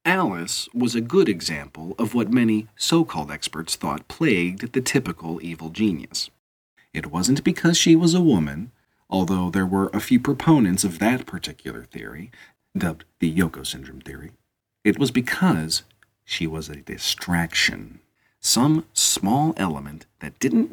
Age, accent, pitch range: 40-59, American, 85-135 Hz